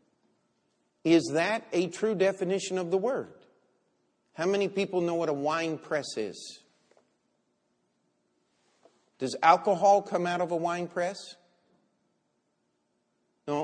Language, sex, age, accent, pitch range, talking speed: English, male, 50-69, American, 140-185 Hz, 115 wpm